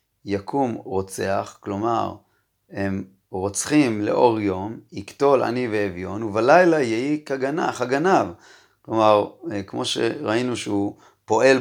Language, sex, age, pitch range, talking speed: Hebrew, male, 30-49, 105-140 Hz, 95 wpm